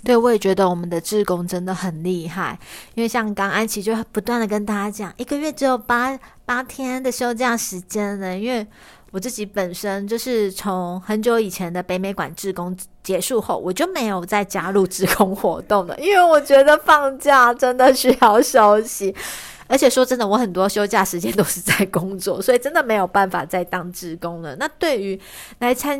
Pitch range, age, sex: 185-235 Hz, 30-49, female